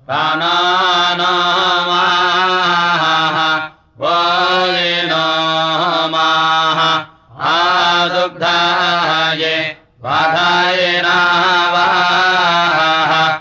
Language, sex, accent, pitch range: Russian, male, Indian, 160-175 Hz